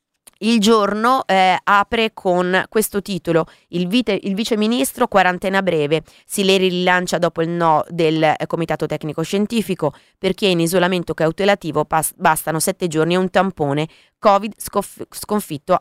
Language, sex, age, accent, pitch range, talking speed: Italian, female, 20-39, native, 160-195 Hz, 145 wpm